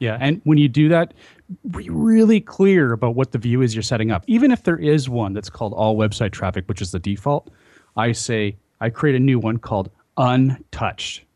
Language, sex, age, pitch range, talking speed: English, male, 30-49, 100-135 Hz, 210 wpm